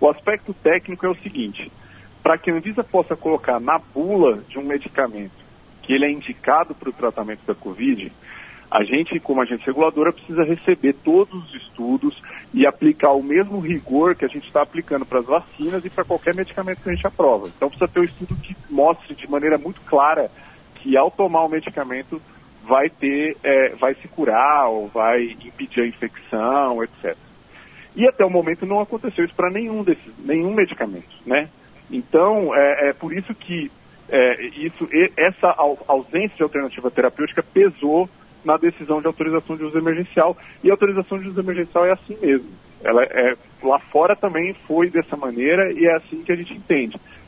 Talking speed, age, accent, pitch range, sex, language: 180 wpm, 40-59, Brazilian, 145-190 Hz, male, Portuguese